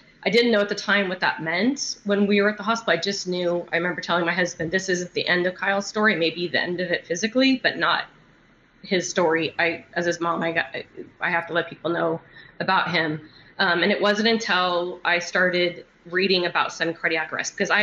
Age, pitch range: 20-39, 165-185 Hz